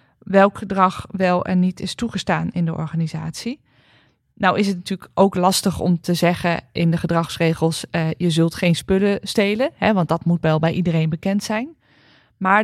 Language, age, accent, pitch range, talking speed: Dutch, 20-39, Dutch, 170-195 Hz, 175 wpm